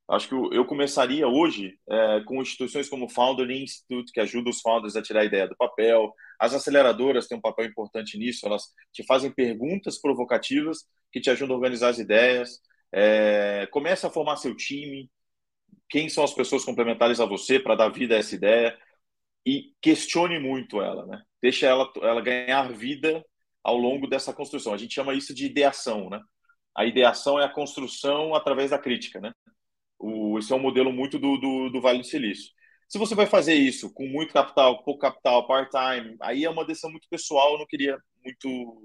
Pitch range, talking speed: 115-145 Hz, 190 wpm